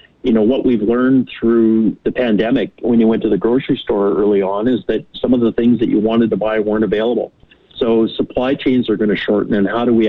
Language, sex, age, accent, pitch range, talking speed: English, male, 50-69, American, 100-120 Hz, 245 wpm